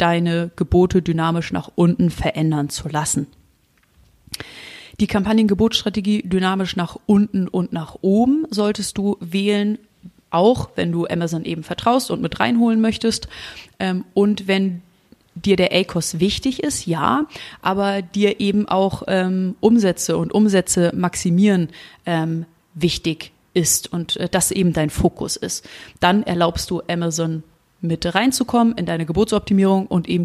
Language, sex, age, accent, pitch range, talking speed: German, female, 30-49, German, 170-205 Hz, 125 wpm